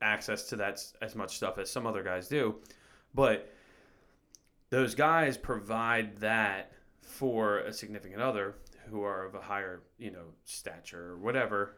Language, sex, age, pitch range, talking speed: English, male, 30-49, 95-115 Hz, 155 wpm